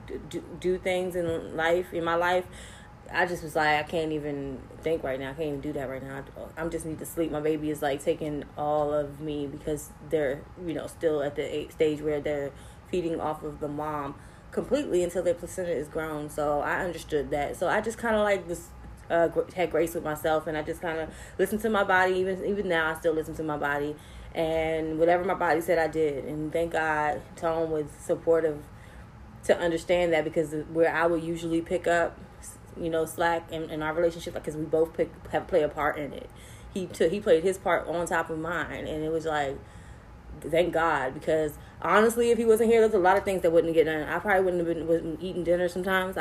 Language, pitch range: English, 150-175 Hz